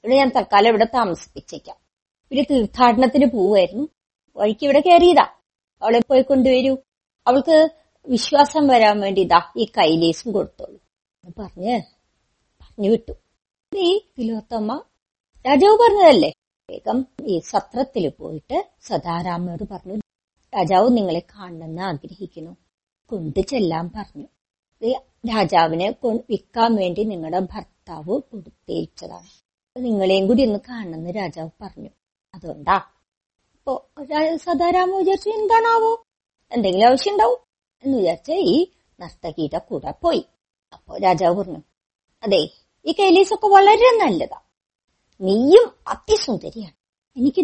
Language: Malayalam